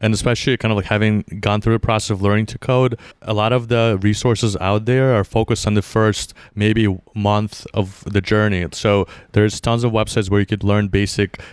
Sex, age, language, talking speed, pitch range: male, 30-49, English, 215 wpm, 105-115 Hz